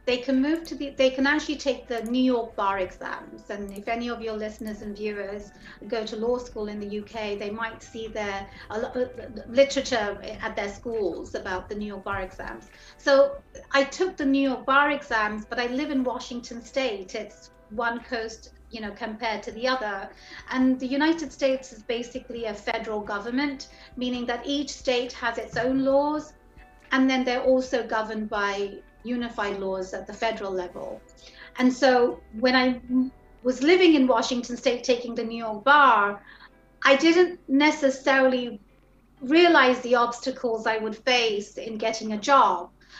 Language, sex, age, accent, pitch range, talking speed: English, female, 40-59, British, 225-270 Hz, 170 wpm